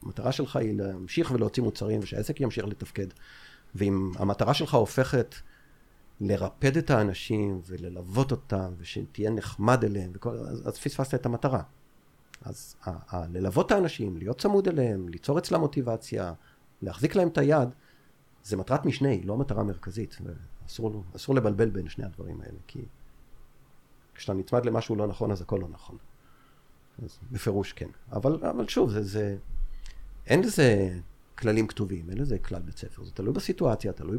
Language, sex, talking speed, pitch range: Hebrew, male, 155 wpm, 95-125 Hz